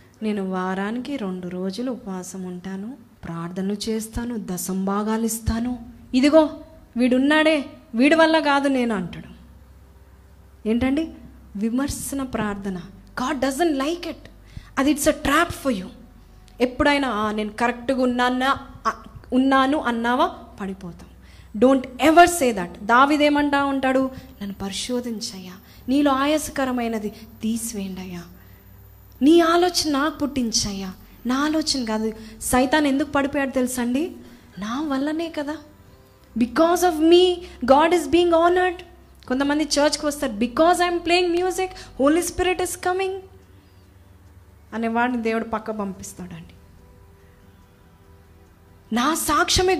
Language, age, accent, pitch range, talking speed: Telugu, 20-39, native, 200-295 Hz, 105 wpm